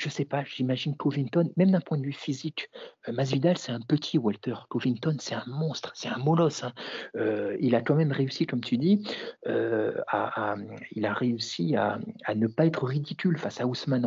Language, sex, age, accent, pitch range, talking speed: French, male, 50-69, French, 125-180 Hz, 210 wpm